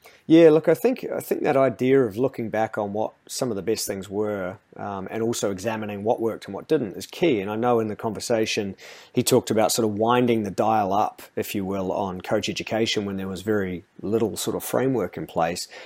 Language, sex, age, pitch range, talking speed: English, male, 30-49, 100-125 Hz, 230 wpm